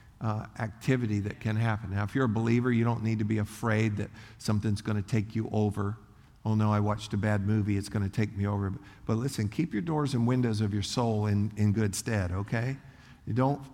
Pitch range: 105-125 Hz